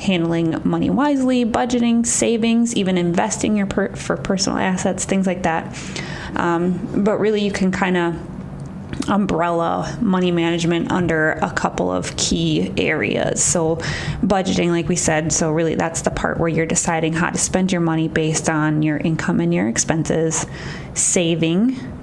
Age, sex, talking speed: 20-39, female, 155 wpm